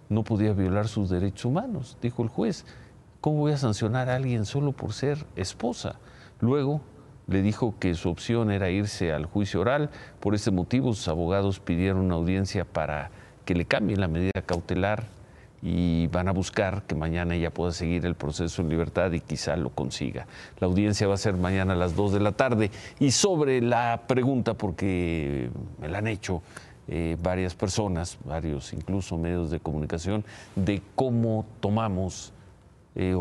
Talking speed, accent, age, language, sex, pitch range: 170 wpm, Mexican, 50-69, Spanish, male, 90-115 Hz